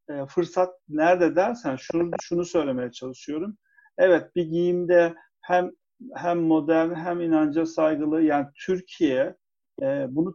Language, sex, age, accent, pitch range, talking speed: Turkish, male, 50-69, native, 160-265 Hz, 110 wpm